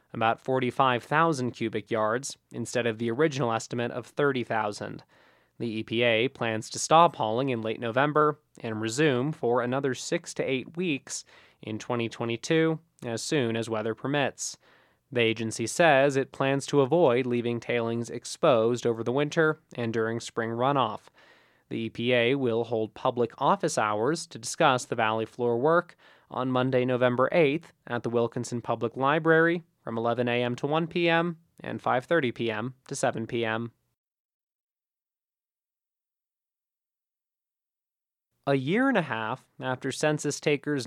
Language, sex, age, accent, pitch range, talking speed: English, male, 20-39, American, 115-150 Hz, 140 wpm